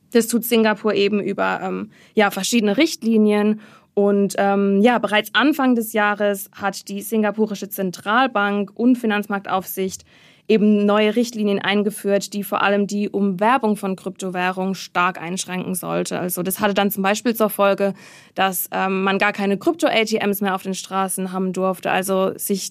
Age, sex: 20-39, female